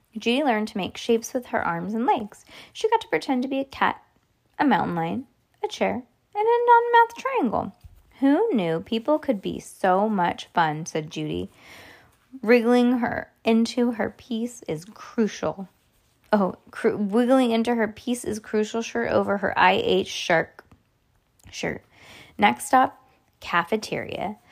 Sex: female